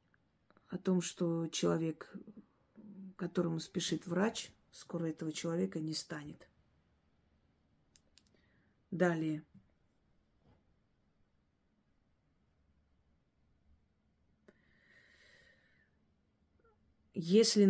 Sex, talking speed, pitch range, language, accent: female, 45 wpm, 150-195 Hz, Russian, native